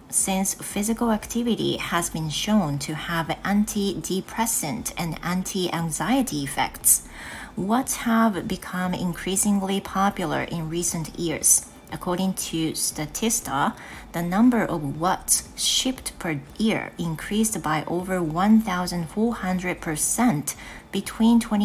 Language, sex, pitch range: Japanese, female, 165-220 Hz